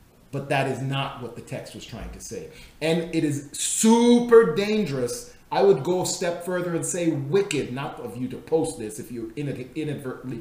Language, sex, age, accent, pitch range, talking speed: English, male, 40-59, American, 120-165 Hz, 195 wpm